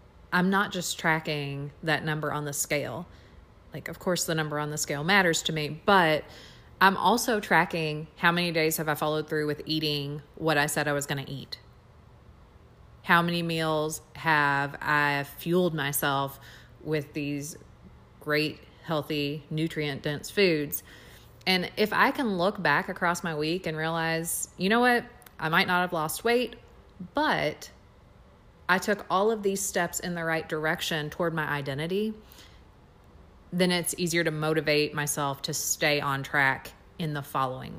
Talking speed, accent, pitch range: 160 wpm, American, 145-180 Hz